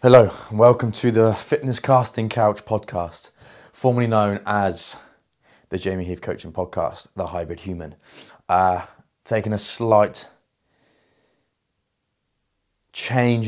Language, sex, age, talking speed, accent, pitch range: English, male, 20-39, 110 wpm, British, 90-110 Hz